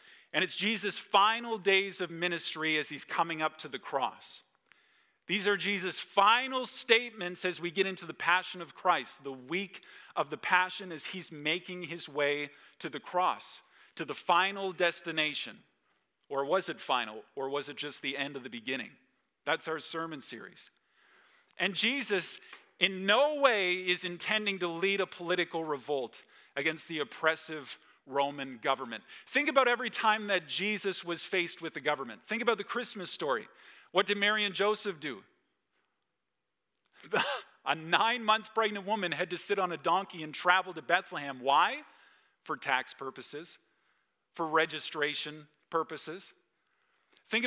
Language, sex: English, male